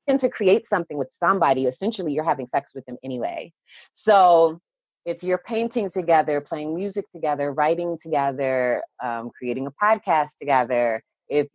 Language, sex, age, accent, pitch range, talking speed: English, female, 30-49, American, 145-200 Hz, 145 wpm